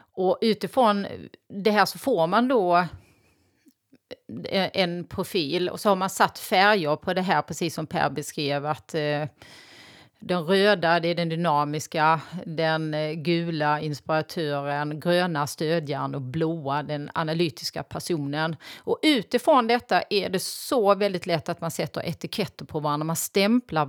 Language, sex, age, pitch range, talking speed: Swedish, female, 30-49, 165-215 Hz, 140 wpm